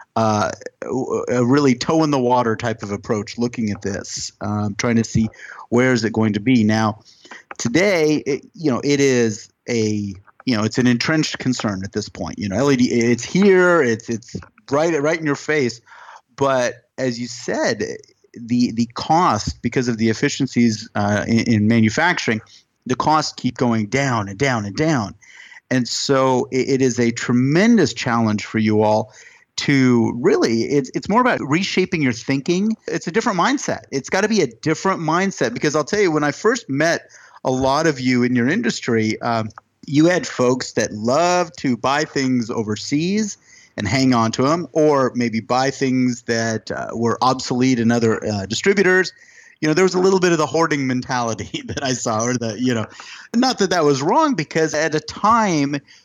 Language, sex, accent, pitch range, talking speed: English, male, American, 115-160 Hz, 185 wpm